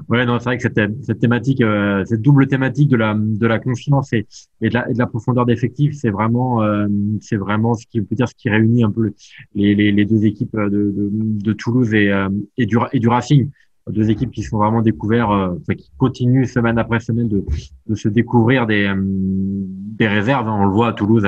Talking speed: 235 wpm